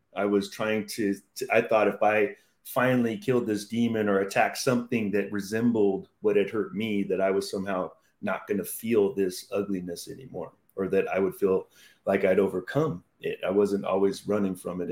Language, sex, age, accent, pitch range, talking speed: English, male, 30-49, American, 100-130 Hz, 195 wpm